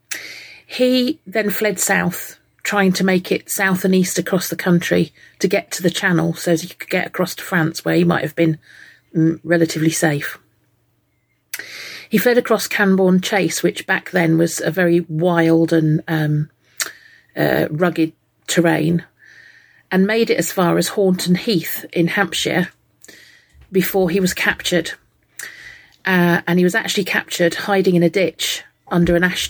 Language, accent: English, British